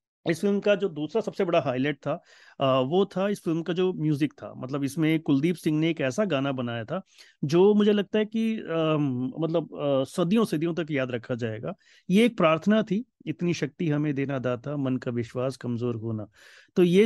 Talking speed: 195 wpm